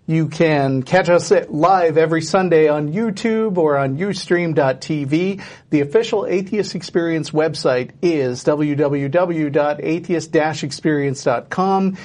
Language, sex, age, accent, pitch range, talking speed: English, male, 40-59, American, 140-170 Hz, 95 wpm